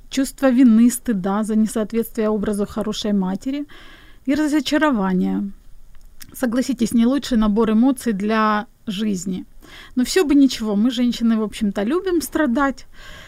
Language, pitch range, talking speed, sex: Ukrainian, 220-275 Hz, 120 wpm, female